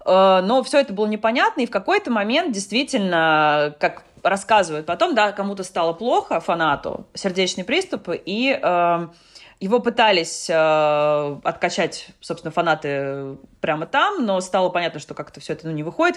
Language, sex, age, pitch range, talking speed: Russian, female, 20-39, 155-205 Hz, 150 wpm